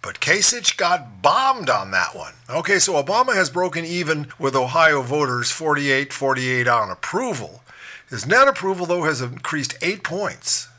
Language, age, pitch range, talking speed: English, 50-69, 120-180 Hz, 150 wpm